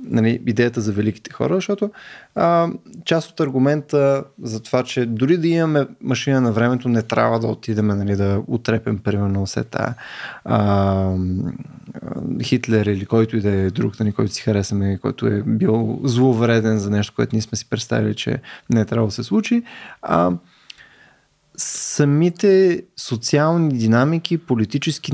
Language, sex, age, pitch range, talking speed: Bulgarian, male, 20-39, 115-165 Hz, 150 wpm